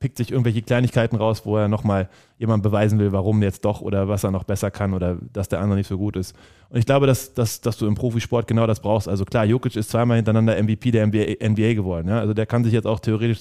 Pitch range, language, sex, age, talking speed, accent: 100-115 Hz, German, male, 20-39, 255 wpm, German